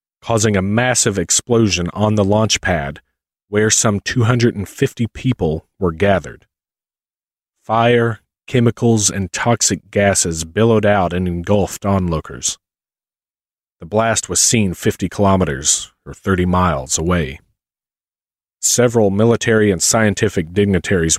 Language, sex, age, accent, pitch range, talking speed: English, male, 40-59, American, 90-115 Hz, 110 wpm